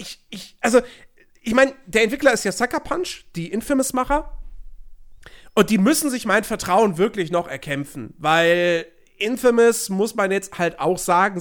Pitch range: 150-205 Hz